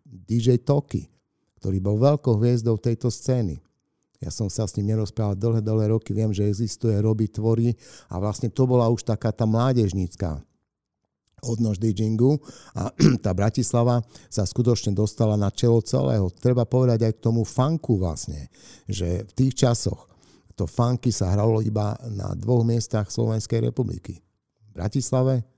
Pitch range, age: 105-125 Hz, 50-69